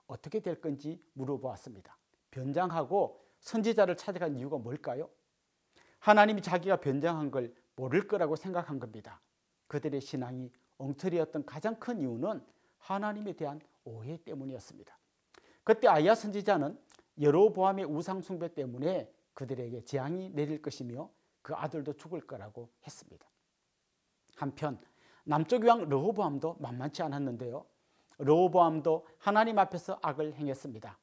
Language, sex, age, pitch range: Korean, male, 40-59, 140-185 Hz